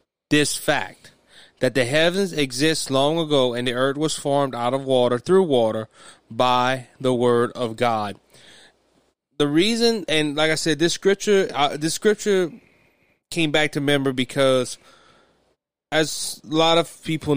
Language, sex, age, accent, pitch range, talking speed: English, male, 20-39, American, 125-150 Hz, 150 wpm